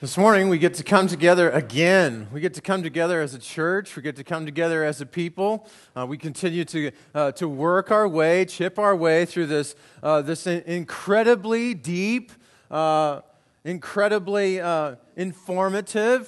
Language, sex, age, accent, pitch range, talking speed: English, male, 30-49, American, 165-225 Hz, 170 wpm